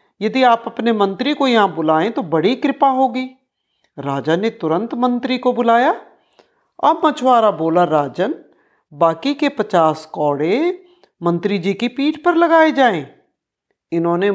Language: Hindi